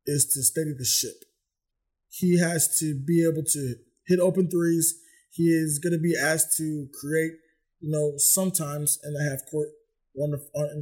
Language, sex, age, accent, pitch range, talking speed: English, male, 20-39, American, 150-175 Hz, 175 wpm